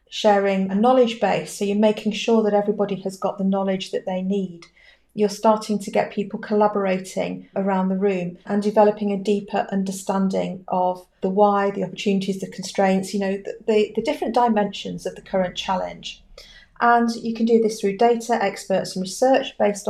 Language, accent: English, British